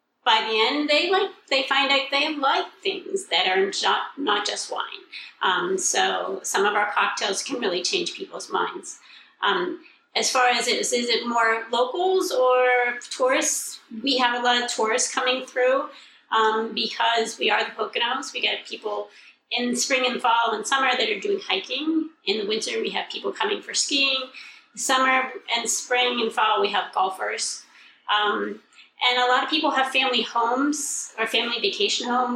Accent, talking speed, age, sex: American, 175 wpm, 30-49, female